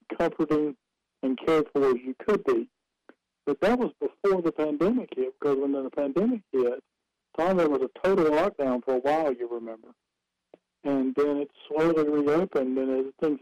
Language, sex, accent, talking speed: English, male, American, 170 wpm